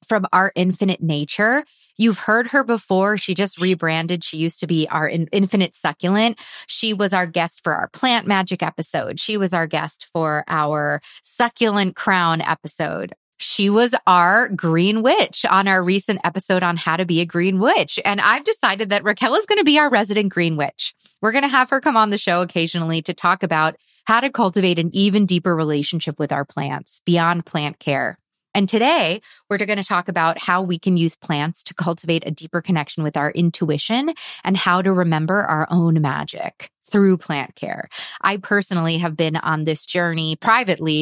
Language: English